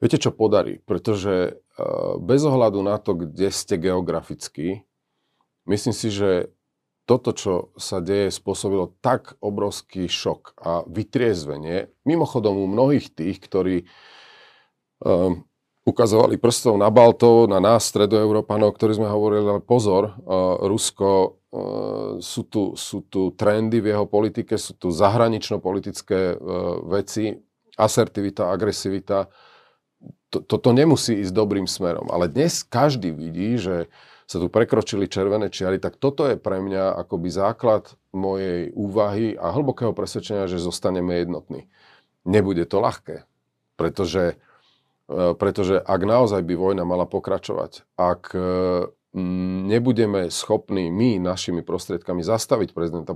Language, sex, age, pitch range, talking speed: Slovak, male, 40-59, 90-110 Hz, 125 wpm